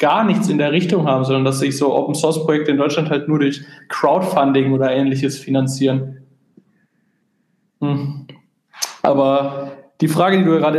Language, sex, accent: German, male, German